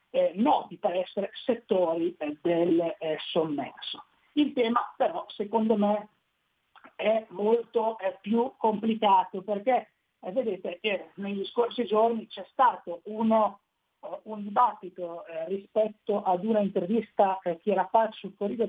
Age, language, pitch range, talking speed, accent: 50-69, Italian, 185-230 Hz, 140 wpm, native